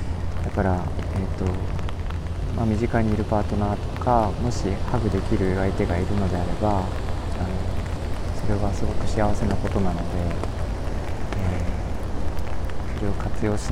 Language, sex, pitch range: Japanese, male, 85-100 Hz